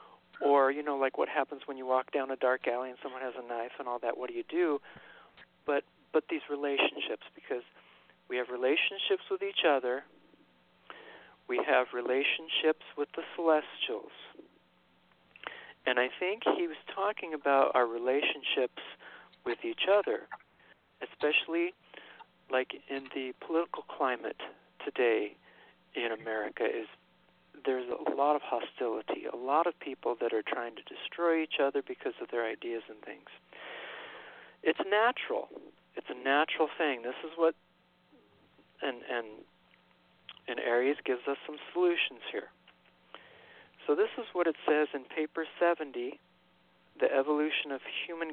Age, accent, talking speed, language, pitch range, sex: 50-69, American, 145 wpm, English, 125-170 Hz, male